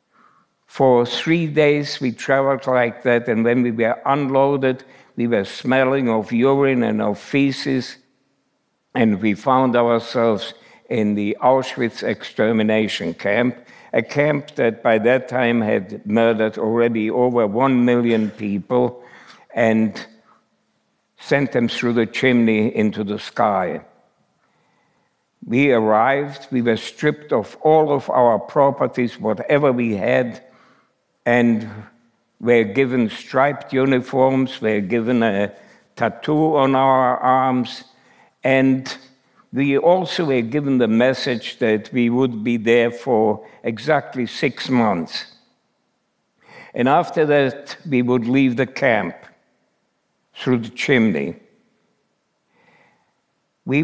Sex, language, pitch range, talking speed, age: male, French, 115-135 Hz, 115 wpm, 60-79